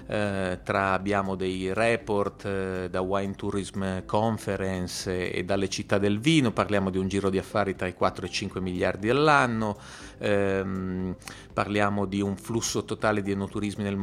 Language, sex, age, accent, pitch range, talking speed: Italian, male, 30-49, native, 100-120 Hz, 150 wpm